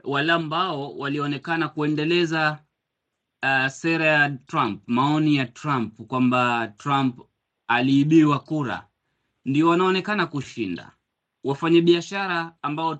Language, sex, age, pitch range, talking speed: Swahili, male, 30-49, 140-170 Hz, 90 wpm